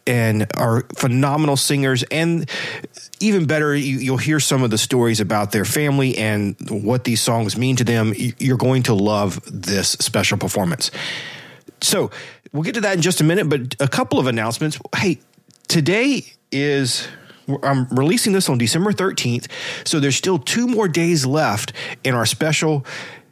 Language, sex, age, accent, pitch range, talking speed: English, male, 40-59, American, 125-180 Hz, 160 wpm